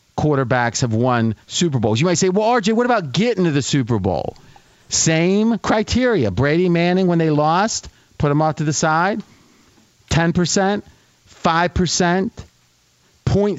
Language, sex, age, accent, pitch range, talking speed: English, male, 40-59, American, 135-180 Hz, 150 wpm